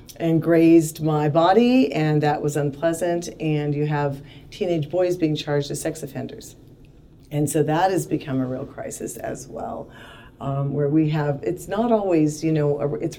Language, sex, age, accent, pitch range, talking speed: English, female, 40-59, American, 140-170 Hz, 175 wpm